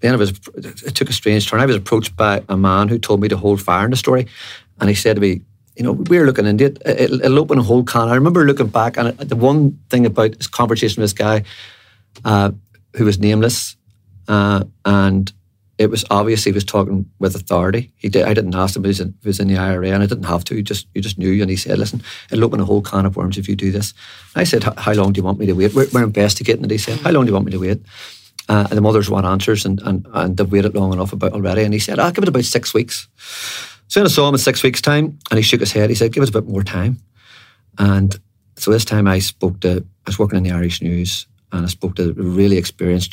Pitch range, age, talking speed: 95-110 Hz, 40-59, 280 wpm